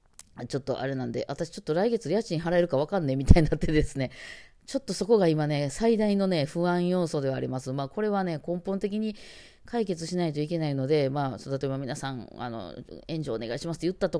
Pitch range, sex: 125-170 Hz, female